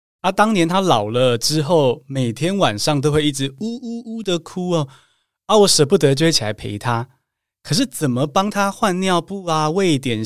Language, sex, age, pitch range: Chinese, male, 20-39, 130-200 Hz